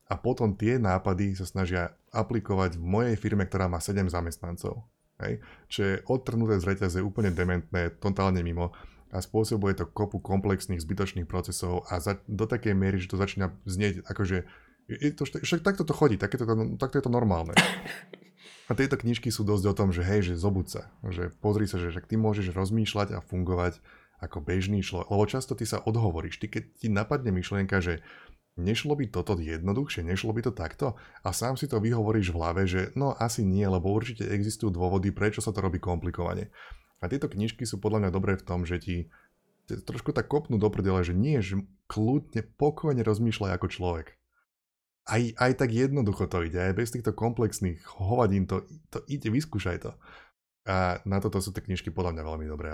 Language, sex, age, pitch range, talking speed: Slovak, male, 20-39, 90-110 Hz, 190 wpm